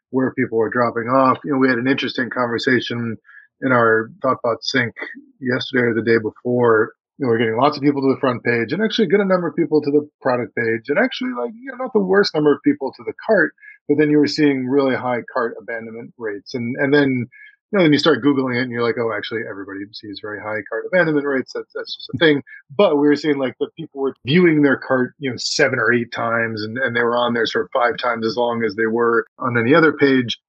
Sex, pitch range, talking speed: male, 120-150 Hz, 255 wpm